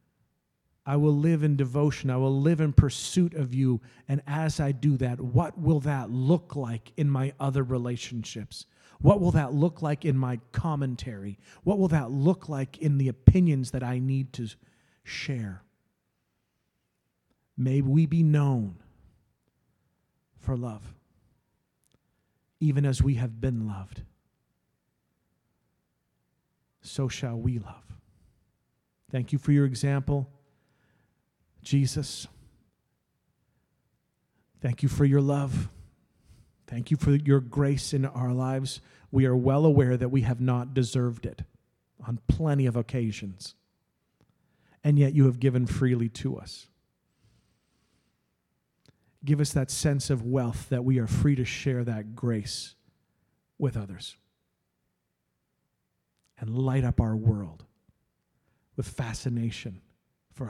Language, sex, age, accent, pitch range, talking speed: English, male, 40-59, American, 115-140 Hz, 125 wpm